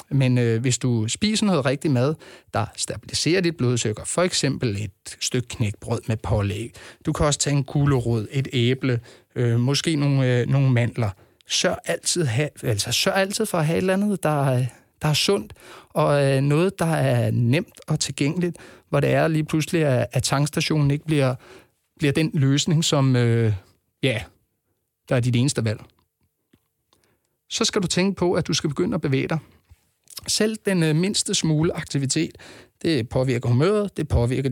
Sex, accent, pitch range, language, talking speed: male, native, 120-165 Hz, Danish, 170 wpm